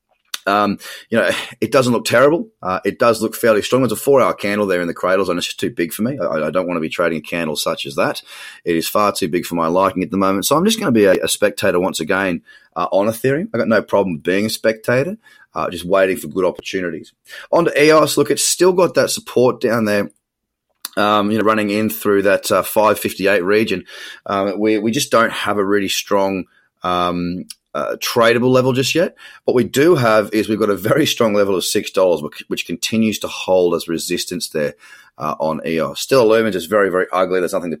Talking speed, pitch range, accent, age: 235 wpm, 90-110 Hz, Australian, 30-49